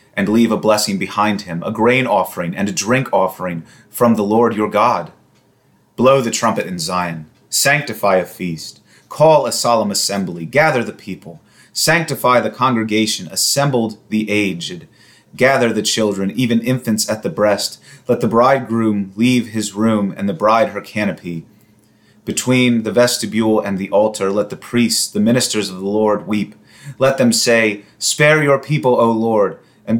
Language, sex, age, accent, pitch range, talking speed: English, male, 30-49, American, 100-115 Hz, 165 wpm